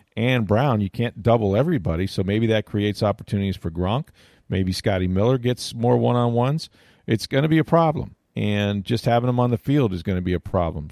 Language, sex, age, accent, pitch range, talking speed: English, male, 40-59, American, 95-115 Hz, 210 wpm